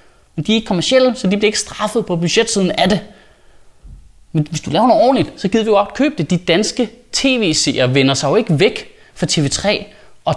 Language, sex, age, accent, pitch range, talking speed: Danish, male, 30-49, native, 150-205 Hz, 220 wpm